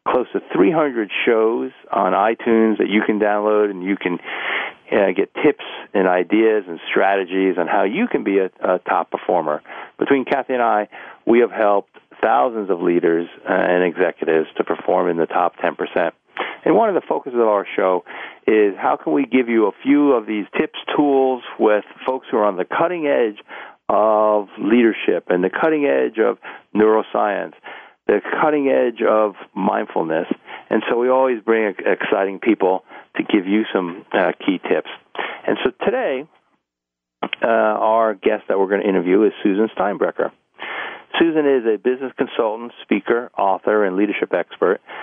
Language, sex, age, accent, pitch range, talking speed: English, male, 50-69, American, 95-120 Hz, 170 wpm